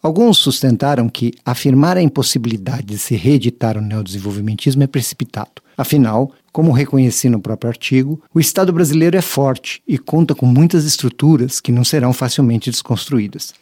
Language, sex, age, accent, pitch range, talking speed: Portuguese, male, 50-69, Brazilian, 120-155 Hz, 150 wpm